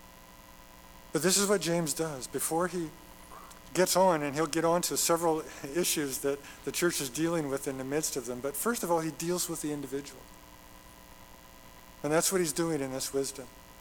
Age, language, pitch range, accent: 50-69, English, 135-170 Hz, American